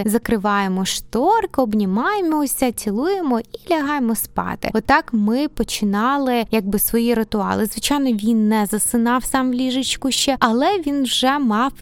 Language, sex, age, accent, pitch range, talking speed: Ukrainian, female, 20-39, native, 210-260 Hz, 130 wpm